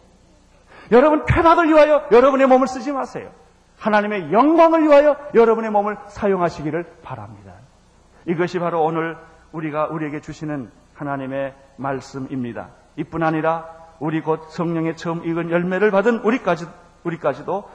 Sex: male